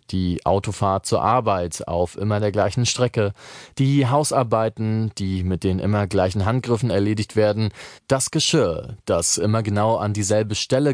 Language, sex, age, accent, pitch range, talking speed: German, male, 30-49, German, 100-130 Hz, 150 wpm